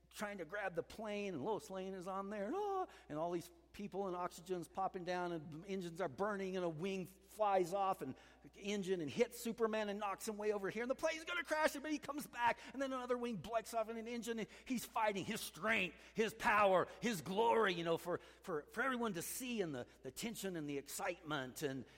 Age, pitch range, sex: 50-69, 180-250 Hz, male